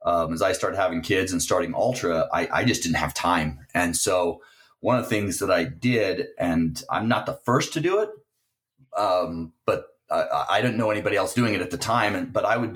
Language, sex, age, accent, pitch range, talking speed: English, male, 30-49, American, 95-135 Hz, 230 wpm